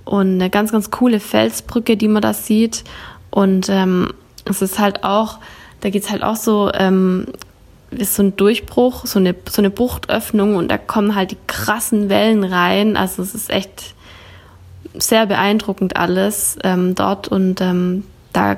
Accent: German